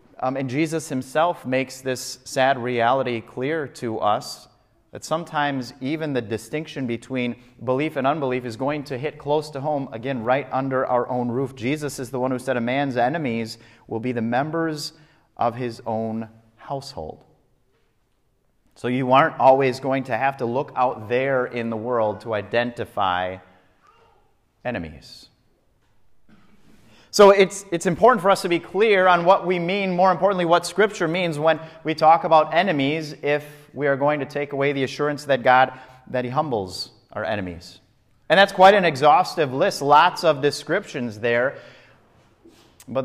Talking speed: 165 wpm